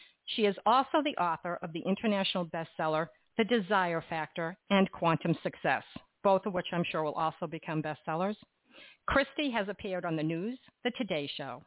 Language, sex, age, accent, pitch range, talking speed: English, female, 50-69, American, 165-215 Hz, 170 wpm